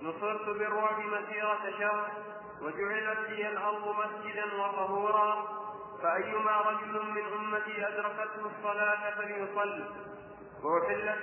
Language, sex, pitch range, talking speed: Arabic, male, 205-210 Hz, 90 wpm